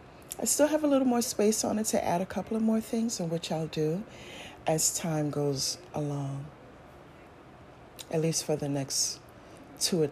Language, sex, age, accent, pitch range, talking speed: English, female, 40-59, American, 160-220 Hz, 185 wpm